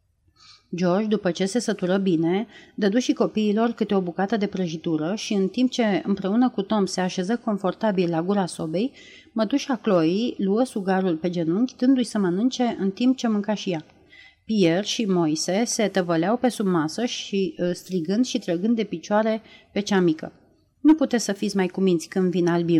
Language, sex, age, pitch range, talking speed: Romanian, female, 30-49, 175-230 Hz, 175 wpm